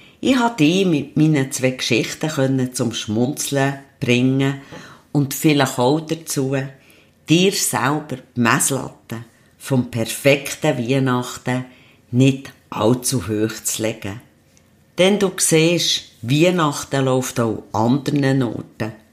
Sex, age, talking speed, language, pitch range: female, 50-69, 110 wpm, German, 120-145 Hz